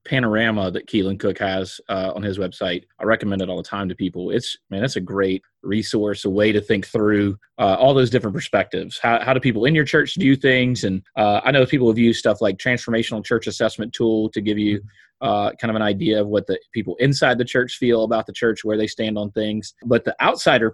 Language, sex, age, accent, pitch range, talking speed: English, male, 30-49, American, 105-130 Hz, 235 wpm